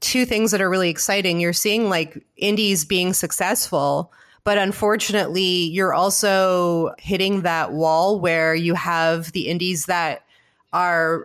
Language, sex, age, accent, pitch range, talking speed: English, female, 30-49, American, 170-205 Hz, 140 wpm